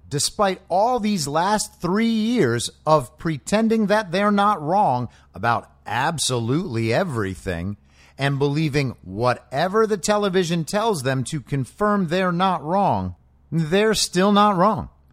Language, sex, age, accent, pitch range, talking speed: English, male, 50-69, American, 120-190 Hz, 125 wpm